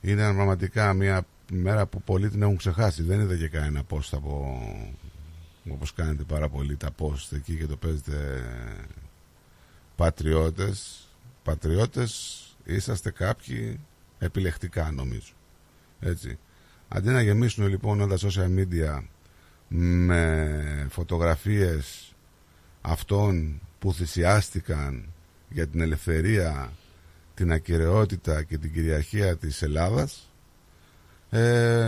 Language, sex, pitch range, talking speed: Greek, male, 80-100 Hz, 105 wpm